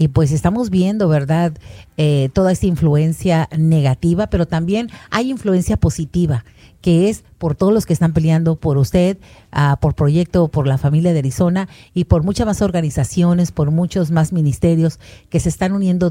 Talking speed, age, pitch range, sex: 170 wpm, 50-69, 155-195 Hz, female